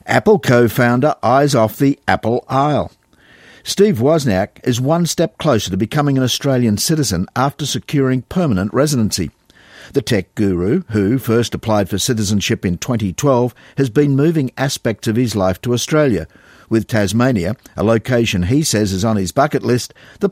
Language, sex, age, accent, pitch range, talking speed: English, male, 50-69, Australian, 110-140 Hz, 155 wpm